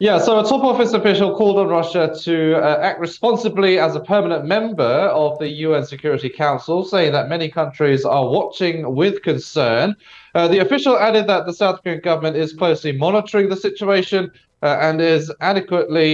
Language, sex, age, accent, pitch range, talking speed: English, male, 30-49, British, 135-185 Hz, 180 wpm